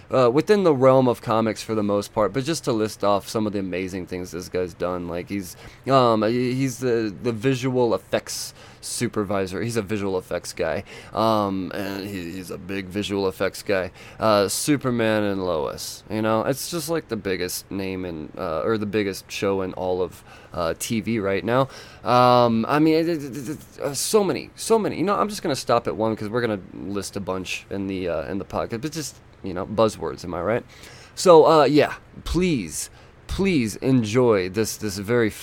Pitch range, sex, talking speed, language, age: 100-130 Hz, male, 195 wpm, English, 20-39